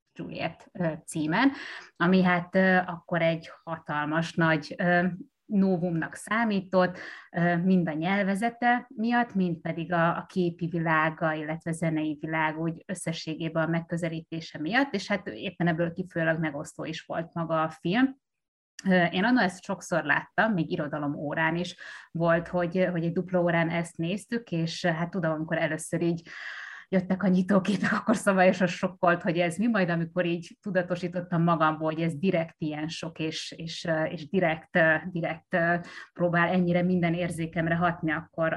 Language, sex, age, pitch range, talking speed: Hungarian, female, 30-49, 160-185 Hz, 145 wpm